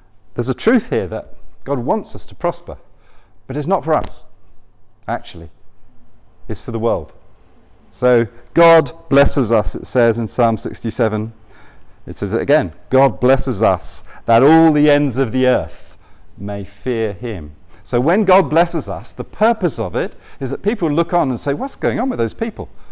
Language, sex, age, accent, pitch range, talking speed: English, male, 40-59, British, 100-130 Hz, 175 wpm